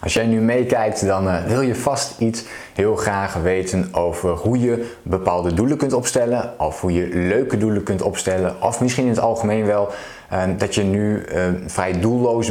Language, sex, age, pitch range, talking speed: Dutch, male, 20-39, 95-115 Hz, 175 wpm